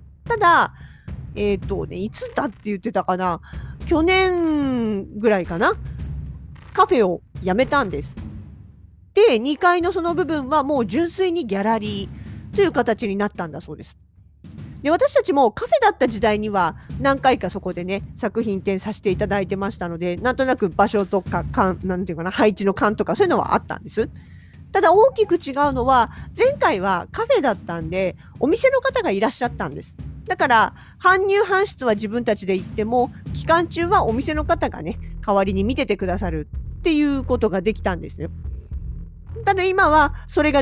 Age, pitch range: 40-59, 185-300 Hz